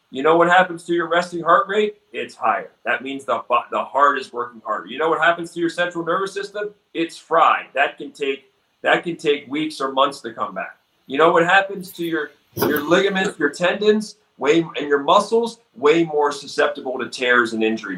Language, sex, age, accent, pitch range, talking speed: English, male, 40-59, American, 145-205 Hz, 210 wpm